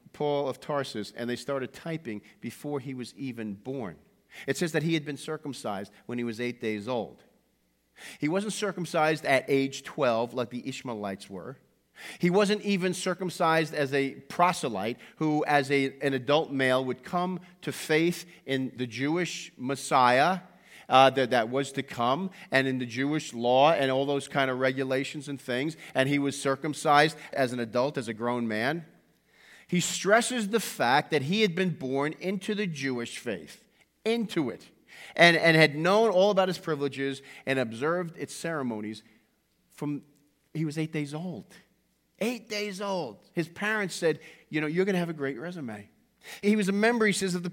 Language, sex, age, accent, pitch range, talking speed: English, male, 40-59, American, 135-180 Hz, 180 wpm